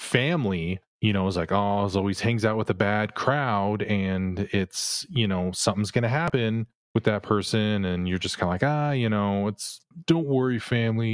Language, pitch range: English, 95-110 Hz